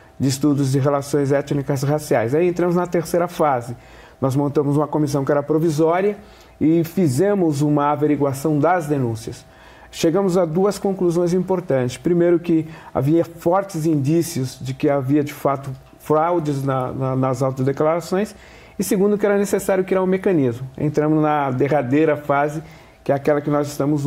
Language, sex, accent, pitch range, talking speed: Portuguese, male, Brazilian, 140-170 Hz, 155 wpm